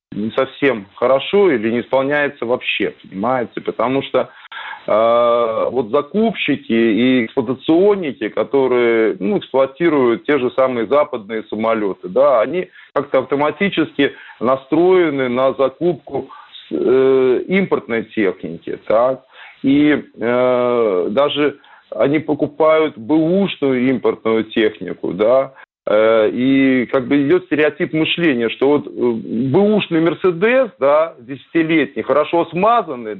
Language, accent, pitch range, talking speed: Russian, native, 130-165 Hz, 105 wpm